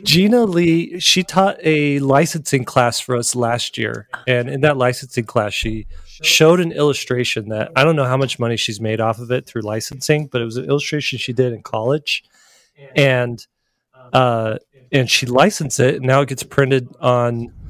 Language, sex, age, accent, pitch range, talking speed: English, male, 30-49, American, 115-140 Hz, 185 wpm